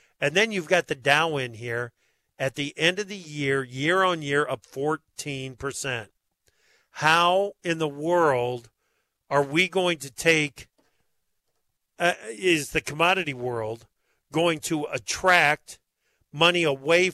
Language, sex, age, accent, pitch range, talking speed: English, male, 50-69, American, 150-185 Hz, 125 wpm